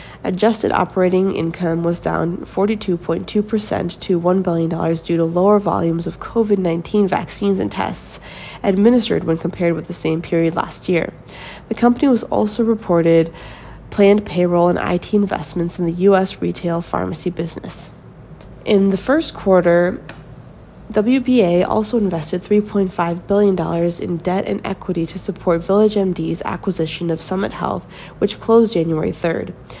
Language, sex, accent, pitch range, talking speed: English, female, American, 165-205 Hz, 135 wpm